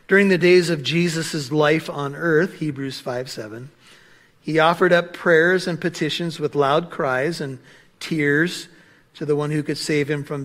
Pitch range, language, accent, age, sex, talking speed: 145-175 Hz, English, American, 50-69, male, 170 wpm